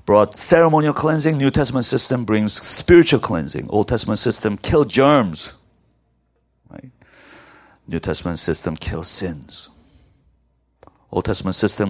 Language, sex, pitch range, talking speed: English, male, 80-120 Hz, 115 wpm